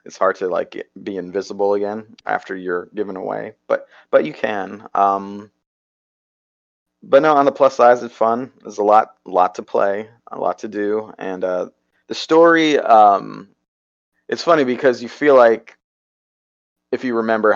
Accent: American